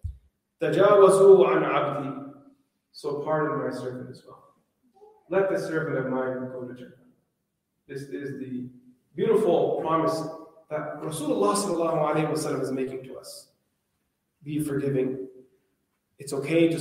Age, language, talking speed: 30-49, English, 105 wpm